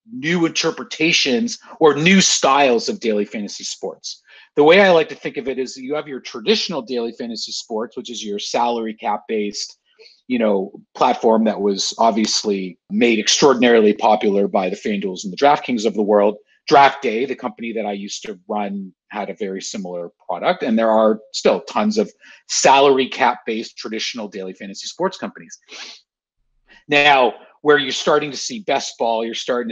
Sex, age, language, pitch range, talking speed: male, 40-59, English, 110-160 Hz, 175 wpm